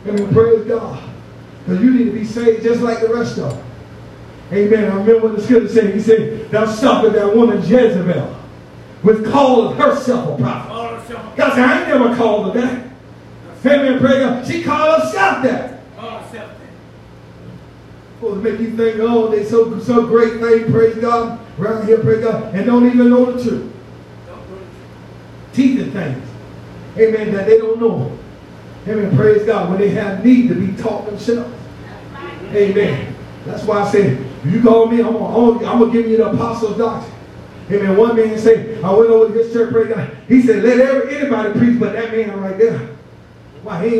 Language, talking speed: English, 185 wpm